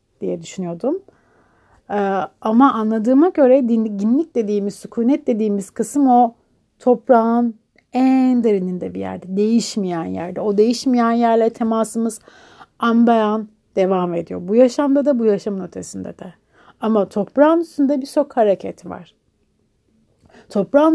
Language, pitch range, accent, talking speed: Turkish, 210-270 Hz, native, 115 wpm